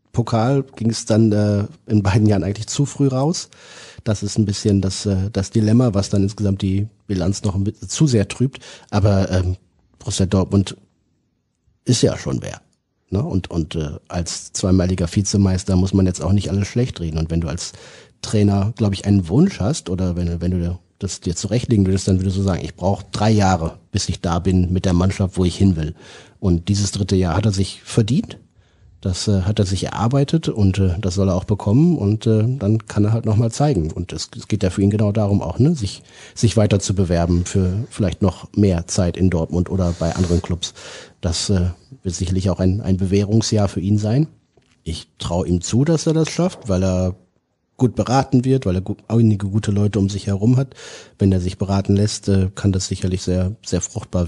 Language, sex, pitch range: German, male, 95-110 Hz